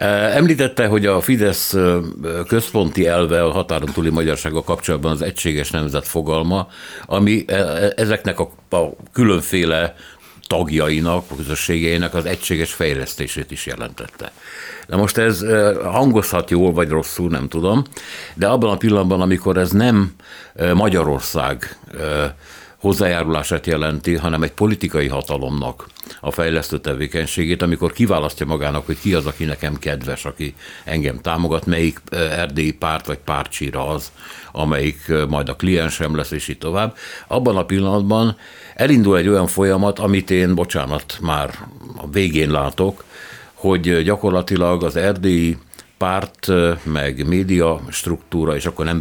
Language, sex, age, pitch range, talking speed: Hungarian, male, 60-79, 80-95 Hz, 125 wpm